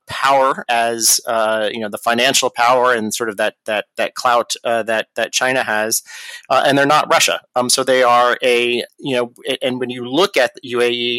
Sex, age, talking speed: male, 30-49, 205 wpm